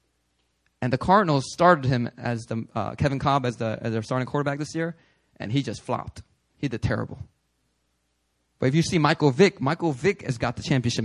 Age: 20-39